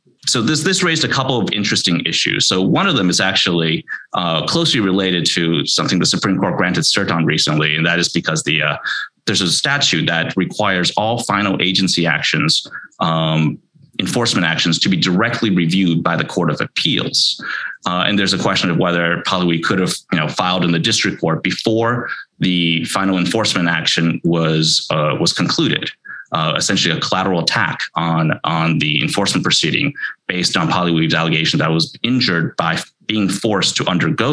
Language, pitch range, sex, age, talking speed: English, 80-95 Hz, male, 30-49, 180 wpm